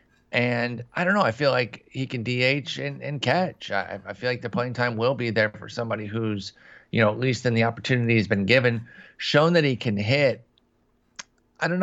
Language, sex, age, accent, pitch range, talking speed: English, male, 30-49, American, 100-130 Hz, 220 wpm